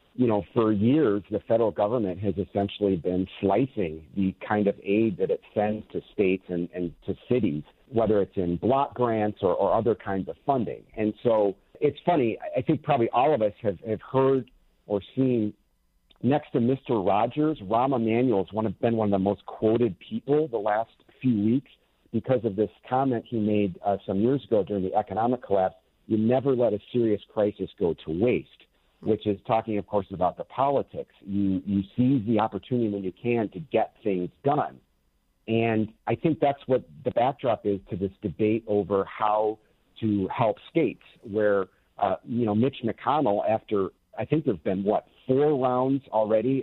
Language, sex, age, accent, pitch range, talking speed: English, male, 50-69, American, 100-120 Hz, 185 wpm